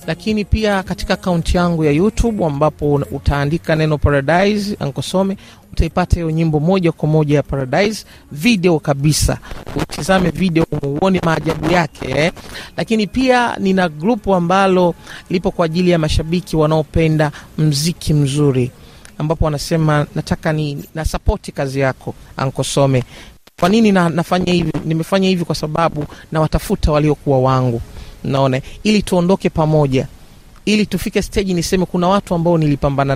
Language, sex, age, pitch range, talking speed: Swahili, male, 40-59, 145-185 Hz, 130 wpm